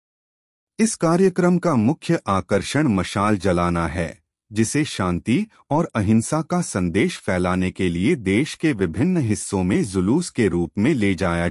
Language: Hindi